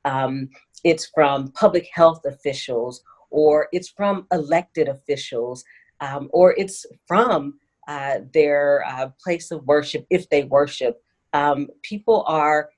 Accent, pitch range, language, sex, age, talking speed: American, 130-155 Hz, English, female, 40-59, 125 wpm